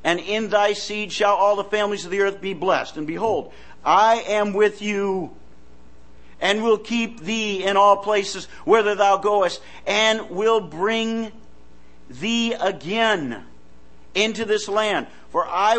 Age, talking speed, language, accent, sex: 50-69, 150 wpm, English, American, male